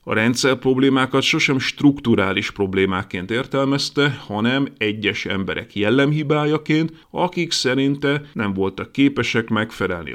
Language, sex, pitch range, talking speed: Hungarian, male, 105-140 Hz, 100 wpm